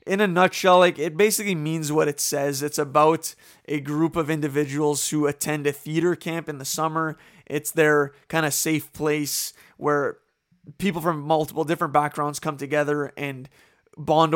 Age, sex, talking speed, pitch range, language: 20-39, male, 165 wpm, 145-175 Hz, English